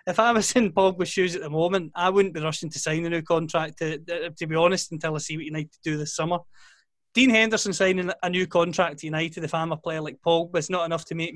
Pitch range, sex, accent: 165-195 Hz, male, British